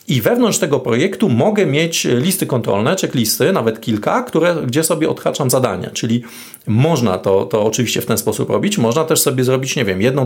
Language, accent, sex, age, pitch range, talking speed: Polish, native, male, 40-59, 120-160 Hz, 185 wpm